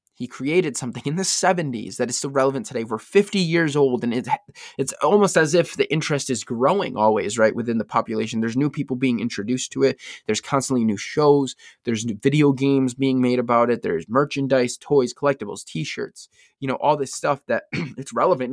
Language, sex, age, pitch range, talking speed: English, male, 20-39, 120-155 Hz, 200 wpm